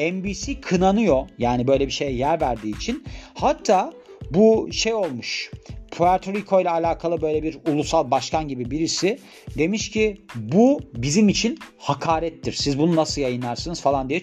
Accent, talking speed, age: native, 150 wpm, 40-59